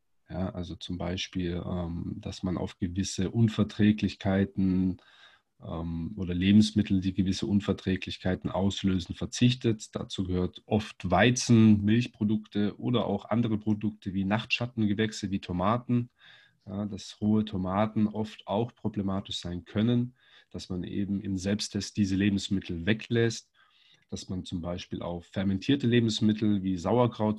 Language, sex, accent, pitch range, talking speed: German, male, German, 95-105 Hz, 115 wpm